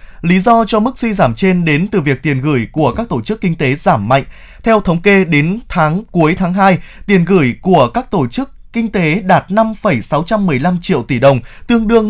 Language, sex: Vietnamese, male